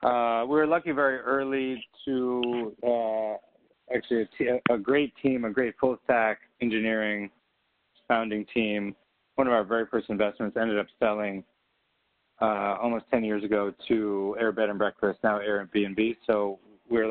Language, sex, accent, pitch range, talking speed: English, male, American, 105-120 Hz, 145 wpm